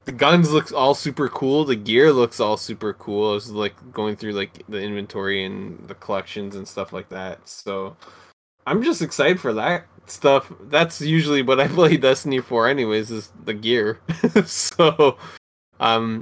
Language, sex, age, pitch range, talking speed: English, male, 20-39, 105-135 Hz, 170 wpm